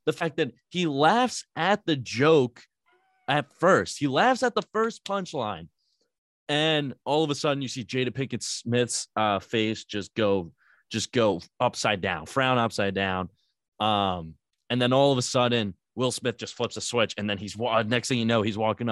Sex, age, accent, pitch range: male, 20-39, American, 110-155 Hz